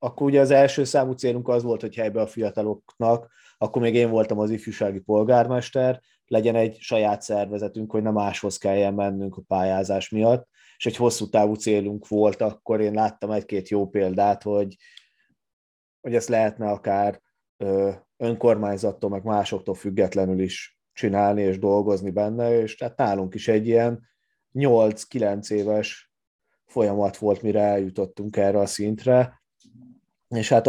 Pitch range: 100-115 Hz